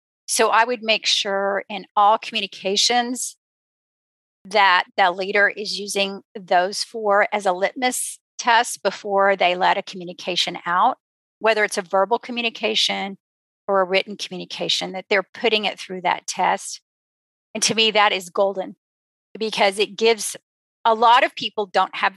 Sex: female